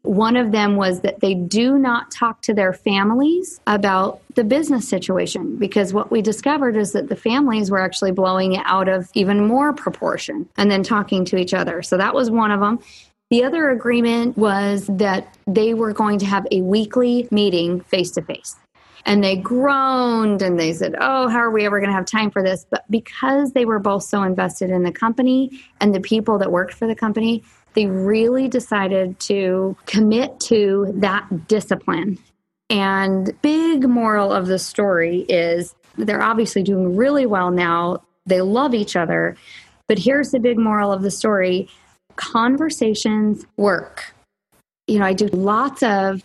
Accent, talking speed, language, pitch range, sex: American, 175 wpm, English, 190-235 Hz, female